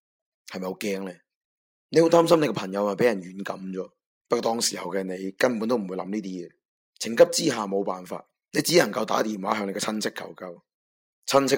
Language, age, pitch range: Chinese, 20-39, 100-145 Hz